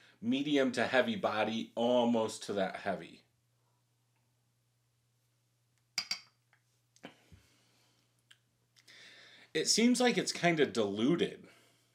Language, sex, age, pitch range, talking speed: English, male, 40-59, 115-135 Hz, 75 wpm